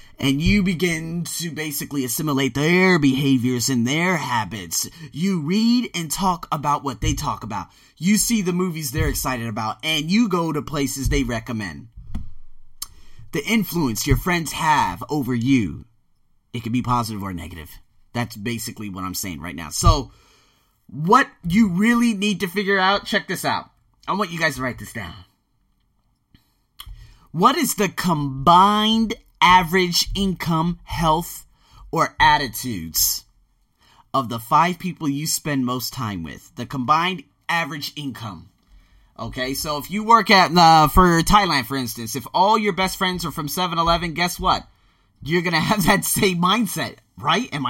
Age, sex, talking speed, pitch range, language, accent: 30-49, male, 155 wpm, 115-185 Hz, English, American